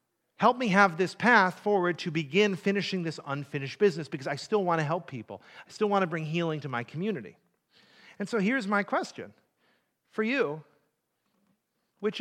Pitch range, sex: 165-235 Hz, male